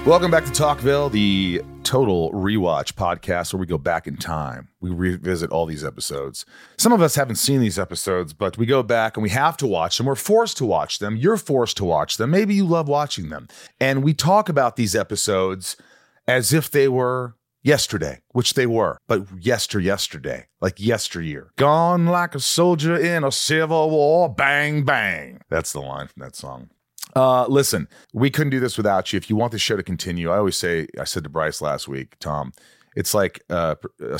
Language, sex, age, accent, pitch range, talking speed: English, male, 30-49, American, 90-135 Hz, 200 wpm